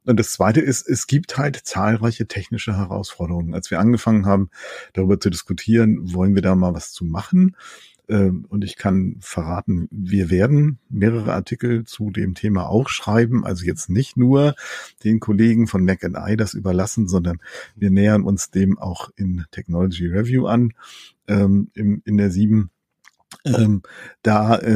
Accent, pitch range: German, 95-115 Hz